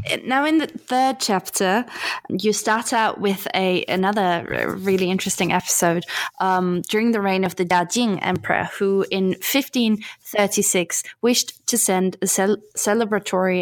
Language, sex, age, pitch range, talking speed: English, female, 20-39, 185-225 Hz, 140 wpm